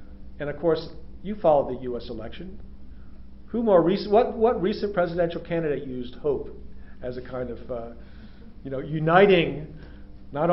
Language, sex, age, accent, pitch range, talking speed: French, male, 50-69, American, 130-160 Hz, 155 wpm